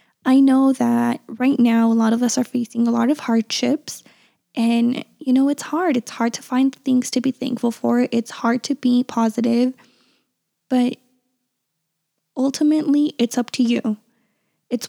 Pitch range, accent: 230-255 Hz, American